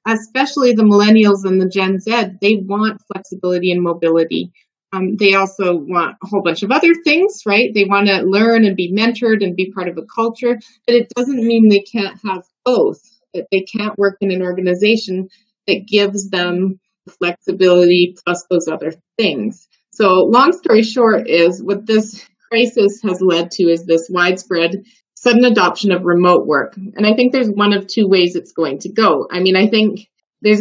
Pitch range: 185-220 Hz